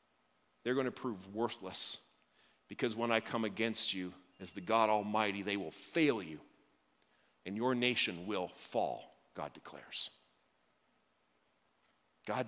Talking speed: 130 wpm